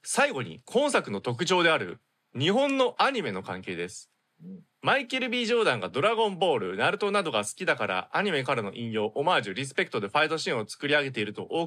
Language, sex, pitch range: Japanese, male, 115-160 Hz